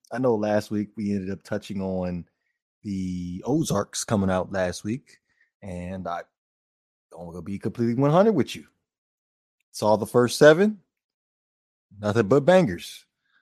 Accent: American